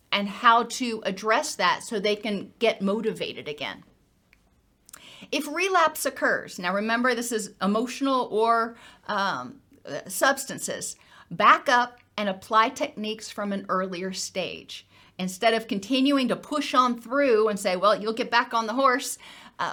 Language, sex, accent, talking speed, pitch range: English, female, American, 145 wpm, 200-265 Hz